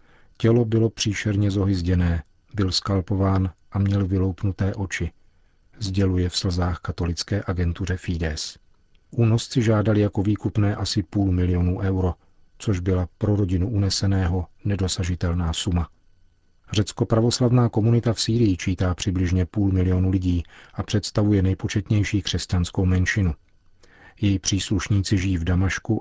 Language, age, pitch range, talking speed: Czech, 40-59, 90-105 Hz, 120 wpm